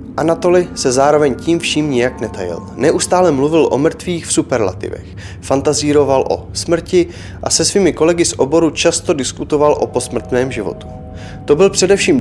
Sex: male